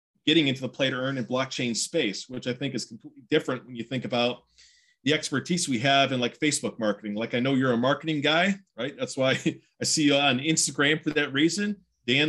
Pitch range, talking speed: 120-155 Hz, 225 wpm